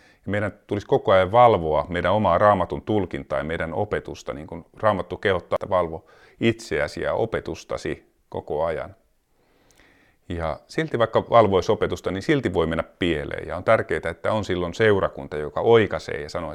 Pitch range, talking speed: 85-110 Hz, 160 wpm